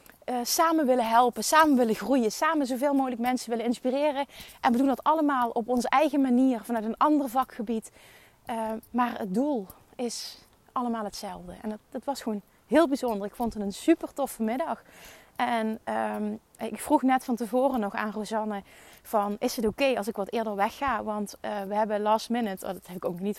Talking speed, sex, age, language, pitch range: 200 wpm, female, 30-49, Dutch, 205-250 Hz